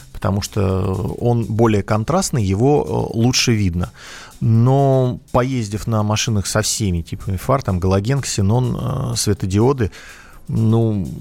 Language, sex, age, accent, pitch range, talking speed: Russian, male, 30-49, native, 100-125 Hz, 110 wpm